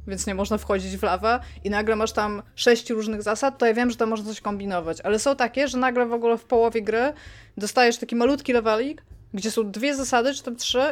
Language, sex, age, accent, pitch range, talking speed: Polish, female, 20-39, native, 200-235 Hz, 230 wpm